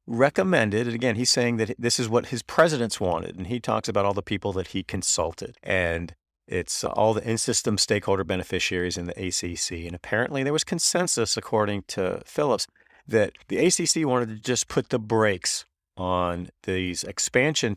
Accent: American